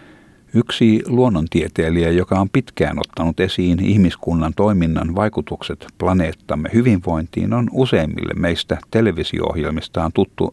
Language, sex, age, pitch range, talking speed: Finnish, male, 60-79, 85-105 Hz, 95 wpm